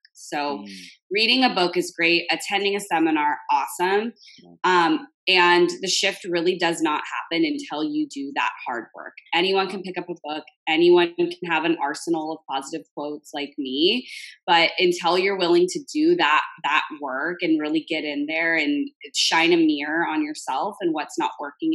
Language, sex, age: English, female, 20-39